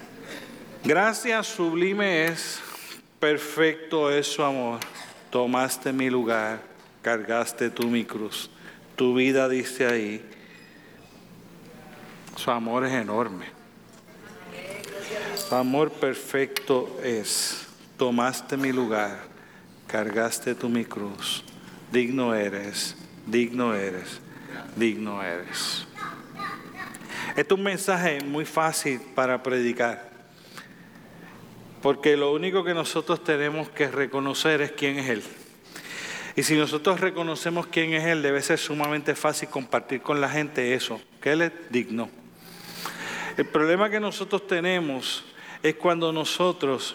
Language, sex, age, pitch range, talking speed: Spanish, male, 50-69, 125-165 Hz, 110 wpm